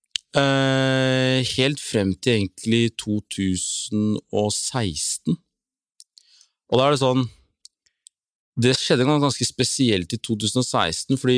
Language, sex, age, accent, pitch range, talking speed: English, male, 30-49, Norwegian, 95-120 Hz, 90 wpm